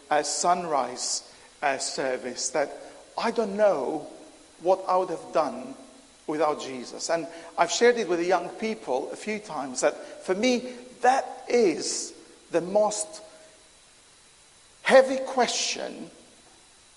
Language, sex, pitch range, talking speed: English, male, 185-250 Hz, 125 wpm